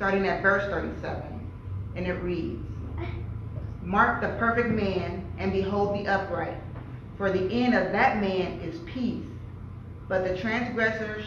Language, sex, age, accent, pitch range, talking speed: English, female, 30-49, American, 165-205 Hz, 140 wpm